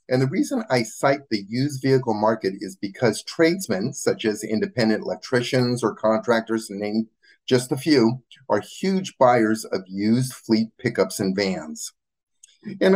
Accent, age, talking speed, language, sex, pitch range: American, 50-69, 155 wpm, English, male, 110-145 Hz